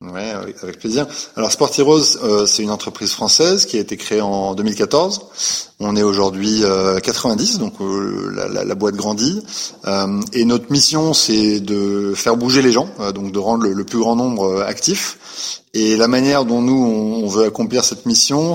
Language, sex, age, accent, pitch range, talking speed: French, male, 20-39, French, 105-140 Hz, 170 wpm